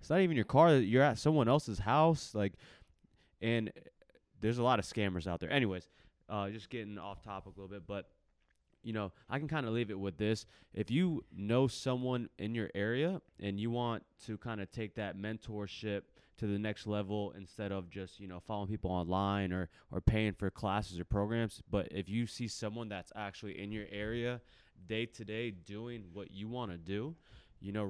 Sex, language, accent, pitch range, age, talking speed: male, English, American, 100-115 Hz, 20-39, 205 wpm